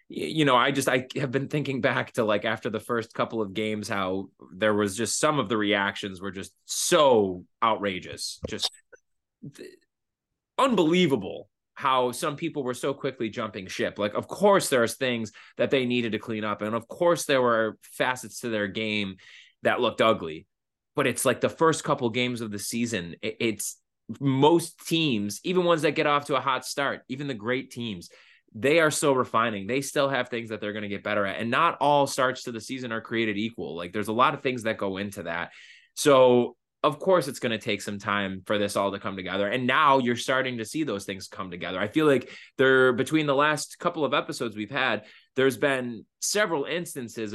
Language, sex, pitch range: English, male, 105-140 Hz